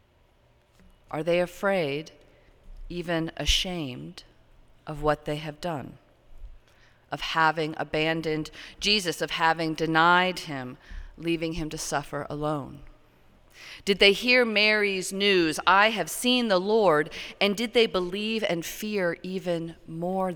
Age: 40-59